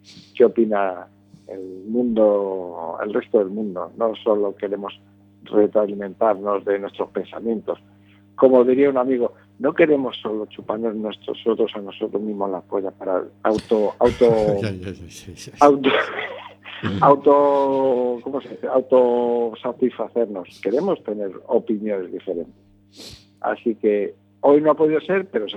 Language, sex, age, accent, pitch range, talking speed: Spanish, male, 50-69, Spanish, 100-125 Hz, 125 wpm